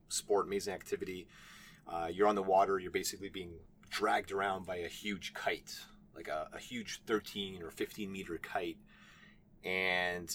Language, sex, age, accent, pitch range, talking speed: English, male, 30-49, American, 90-110 Hz, 155 wpm